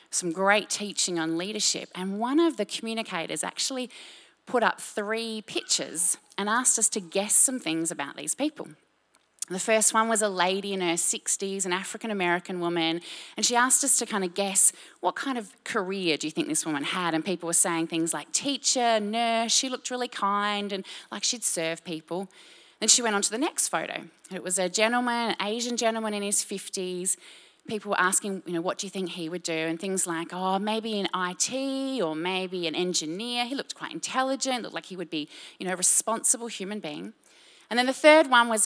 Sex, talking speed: female, 210 wpm